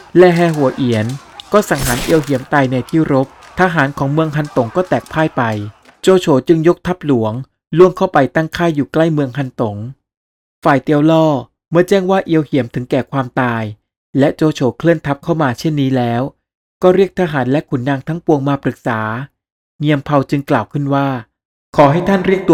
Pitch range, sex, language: 130-160 Hz, male, Thai